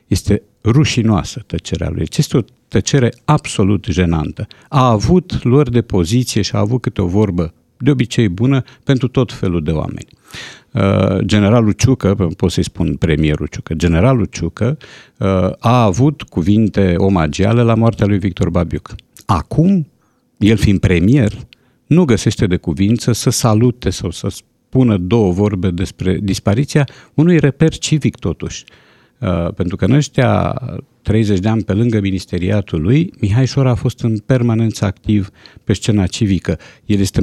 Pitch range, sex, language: 95-125 Hz, male, Romanian